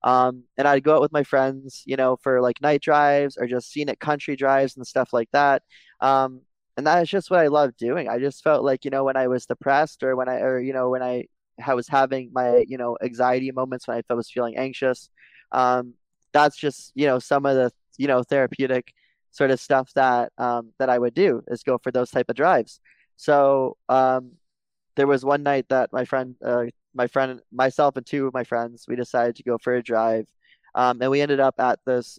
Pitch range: 125-140 Hz